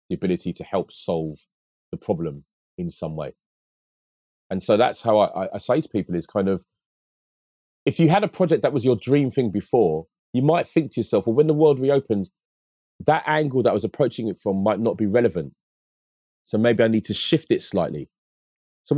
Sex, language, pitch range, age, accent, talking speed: male, English, 100-150 Hz, 30-49, British, 200 wpm